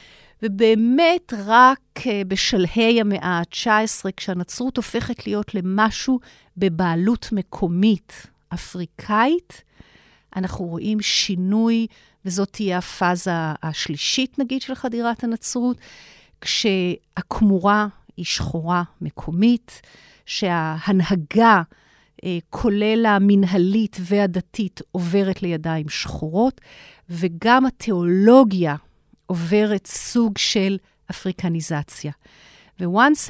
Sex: female